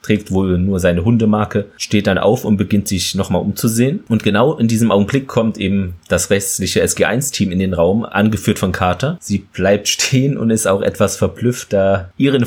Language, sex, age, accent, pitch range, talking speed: German, male, 30-49, German, 95-115 Hz, 190 wpm